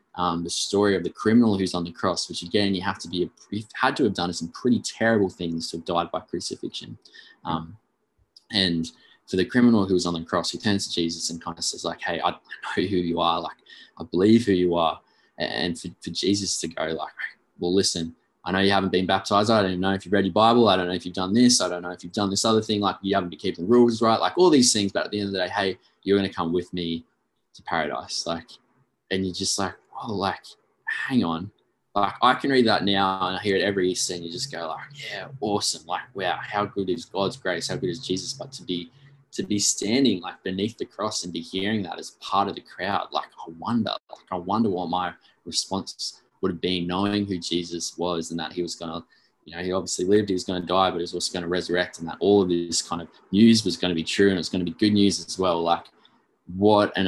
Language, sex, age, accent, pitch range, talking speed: English, male, 20-39, Australian, 85-100 Hz, 265 wpm